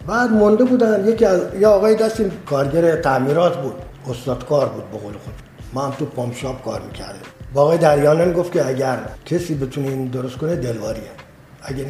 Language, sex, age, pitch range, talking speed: Persian, male, 50-69, 130-185 Hz, 175 wpm